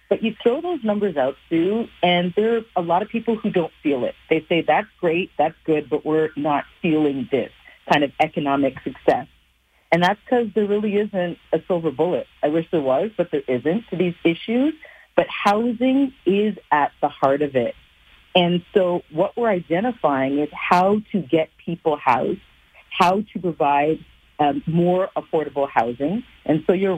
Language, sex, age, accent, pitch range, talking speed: English, female, 40-59, American, 150-190 Hz, 180 wpm